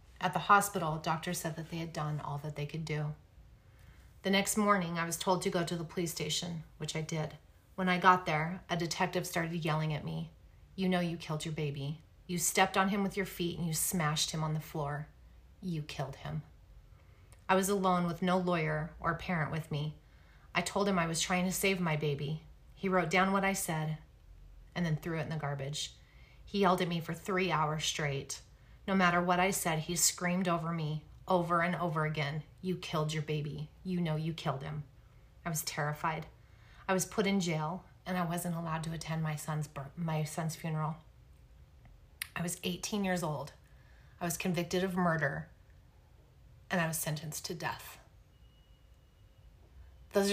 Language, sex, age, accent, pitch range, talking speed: English, female, 30-49, American, 150-180 Hz, 190 wpm